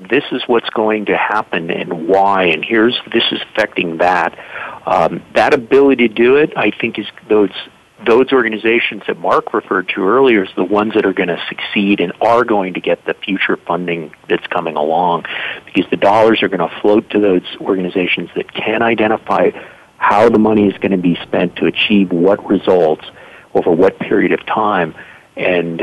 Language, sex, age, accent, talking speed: English, male, 50-69, American, 190 wpm